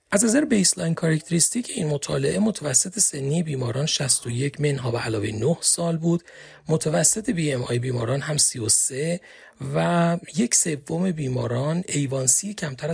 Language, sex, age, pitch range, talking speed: Persian, male, 40-59, 125-175 Hz, 145 wpm